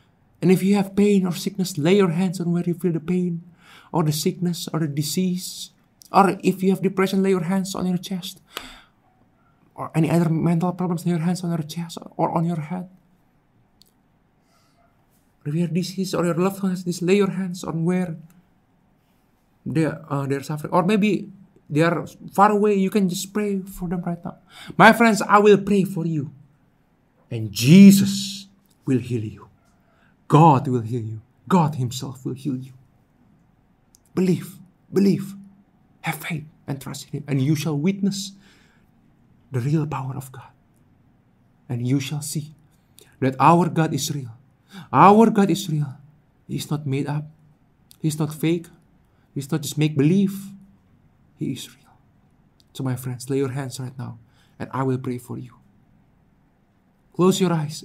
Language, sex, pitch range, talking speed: English, male, 140-185 Hz, 175 wpm